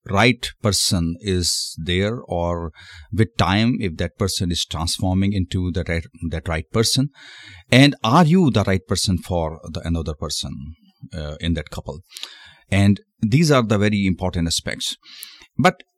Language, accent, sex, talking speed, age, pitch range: Hindi, native, male, 150 wpm, 30-49, 80-105 Hz